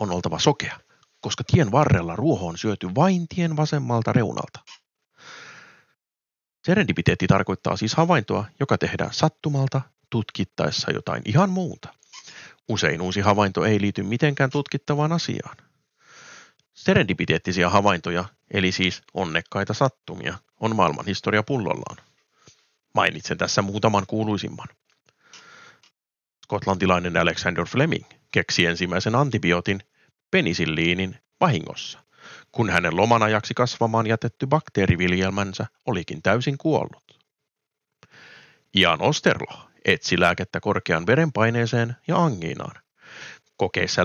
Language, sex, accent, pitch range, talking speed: Finnish, male, native, 95-125 Hz, 95 wpm